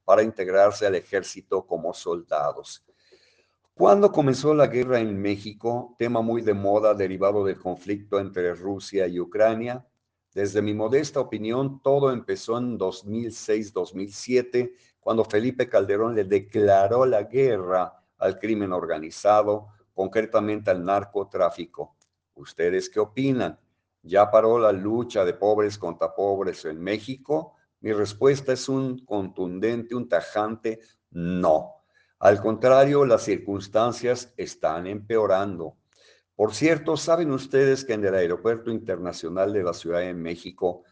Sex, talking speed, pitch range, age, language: male, 125 wpm, 100-125 Hz, 50-69, Spanish